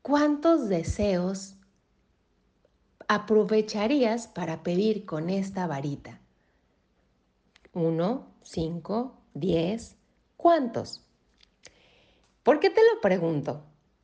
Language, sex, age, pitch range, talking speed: Spanish, female, 40-59, 170-235 Hz, 75 wpm